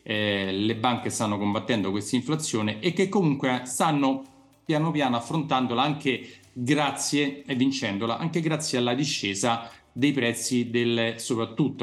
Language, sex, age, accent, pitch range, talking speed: Italian, male, 40-59, native, 110-130 Hz, 125 wpm